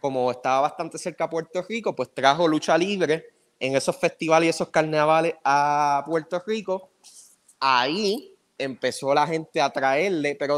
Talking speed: 155 wpm